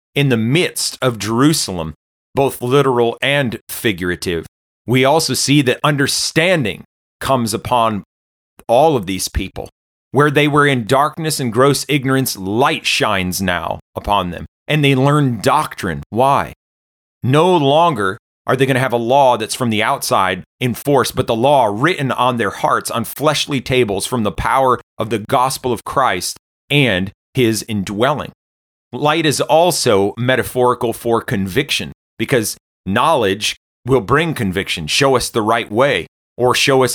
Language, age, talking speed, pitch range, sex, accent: English, 30-49, 150 wpm, 105-140 Hz, male, American